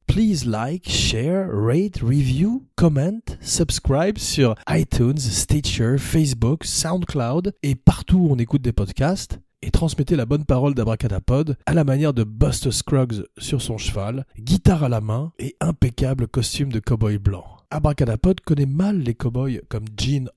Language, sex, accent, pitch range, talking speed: French, male, French, 115-155 Hz, 150 wpm